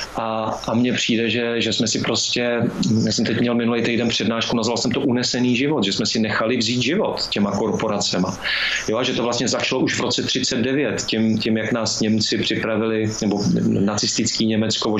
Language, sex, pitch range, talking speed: Czech, male, 110-120 Hz, 190 wpm